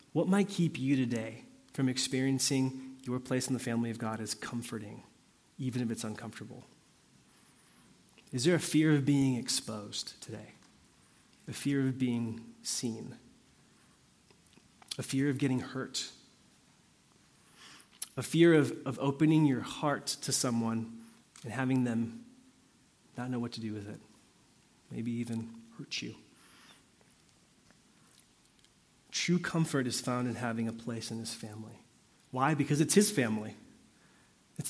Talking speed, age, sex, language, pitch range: 135 wpm, 30-49, male, English, 120-145 Hz